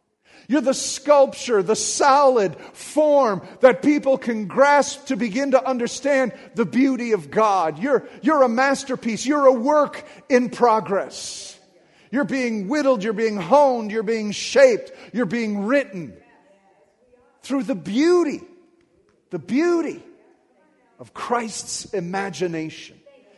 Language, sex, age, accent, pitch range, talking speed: English, male, 50-69, American, 205-275 Hz, 120 wpm